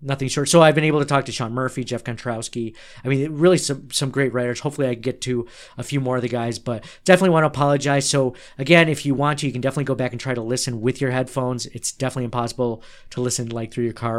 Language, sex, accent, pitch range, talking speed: English, male, American, 120-140 Hz, 265 wpm